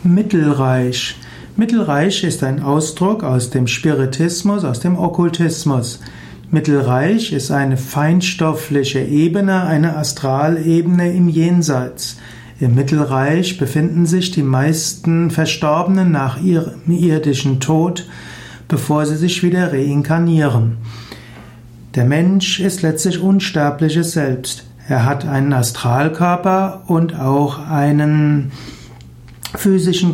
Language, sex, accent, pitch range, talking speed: German, male, German, 135-175 Hz, 100 wpm